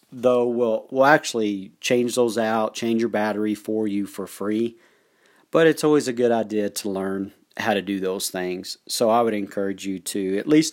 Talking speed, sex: 195 wpm, male